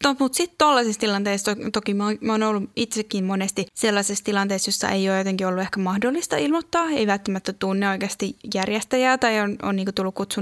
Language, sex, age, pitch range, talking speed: Finnish, female, 10-29, 195-245 Hz, 185 wpm